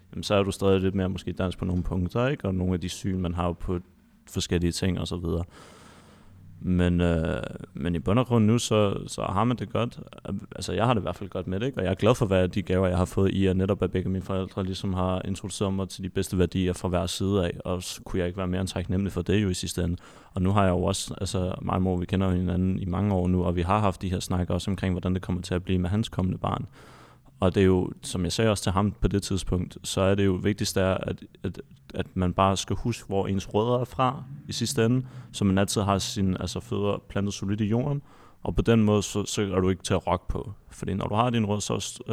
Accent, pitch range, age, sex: native, 90-105 Hz, 30-49, male